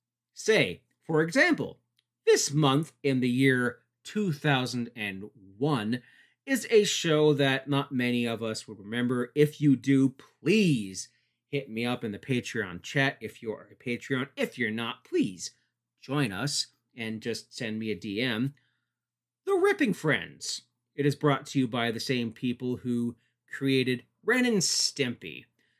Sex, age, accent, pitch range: male, 30-49, American, 120-155 Hz